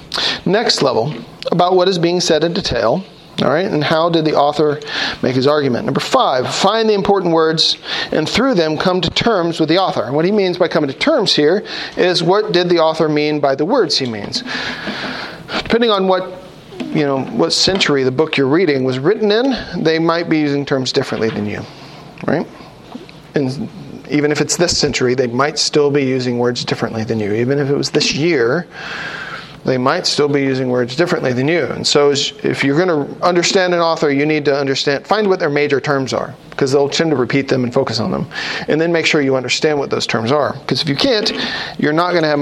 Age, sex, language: 40-59, male, English